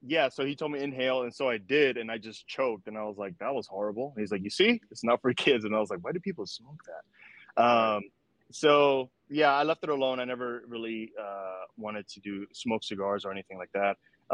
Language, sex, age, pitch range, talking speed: English, male, 20-39, 105-130 Hz, 245 wpm